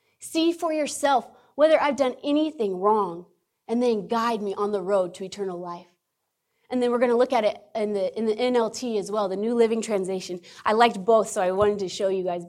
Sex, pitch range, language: female, 195-255 Hz, English